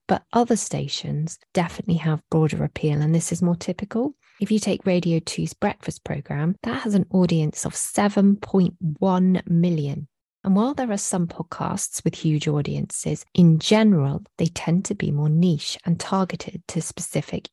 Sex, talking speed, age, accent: female, 160 wpm, 20-39, British